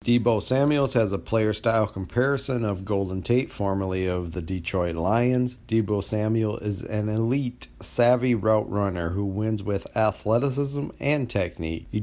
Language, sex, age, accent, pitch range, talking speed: English, male, 40-59, American, 105-125 Hz, 150 wpm